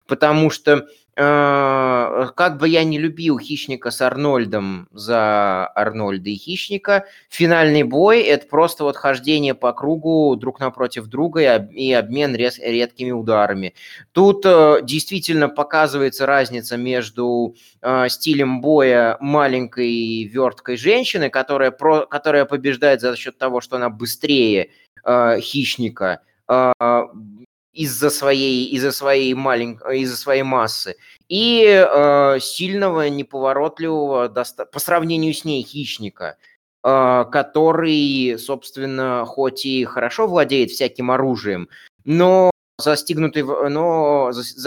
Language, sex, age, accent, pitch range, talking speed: Russian, male, 20-39, native, 125-150 Hz, 110 wpm